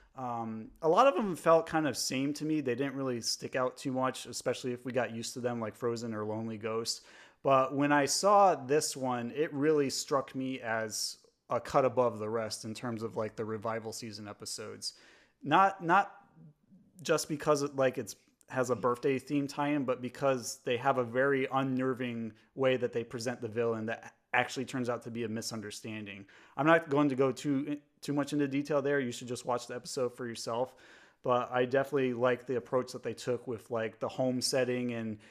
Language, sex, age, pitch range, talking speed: English, male, 30-49, 115-135 Hz, 205 wpm